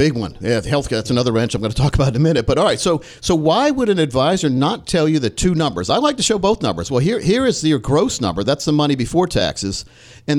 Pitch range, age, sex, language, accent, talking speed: 110-150 Hz, 50-69, male, English, American, 290 wpm